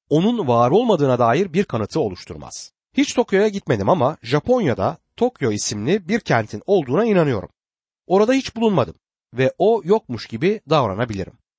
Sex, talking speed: male, 135 wpm